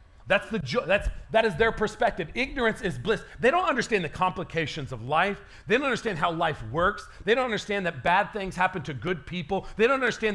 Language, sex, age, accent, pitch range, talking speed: English, male, 40-59, American, 165-210 Hz, 215 wpm